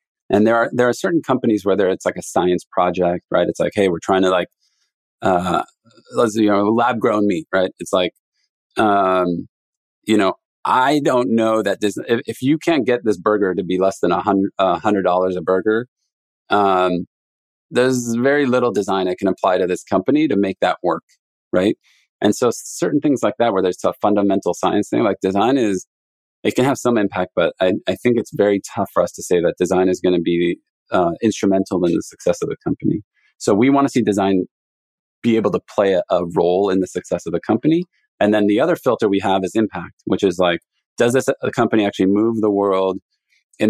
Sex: male